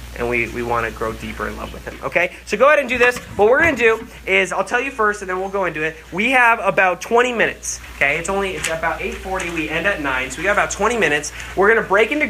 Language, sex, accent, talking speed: English, male, American, 295 wpm